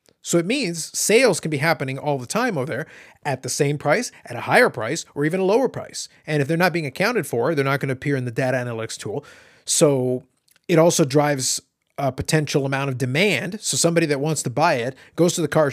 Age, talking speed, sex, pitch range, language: 30-49, 235 wpm, male, 135-160 Hz, English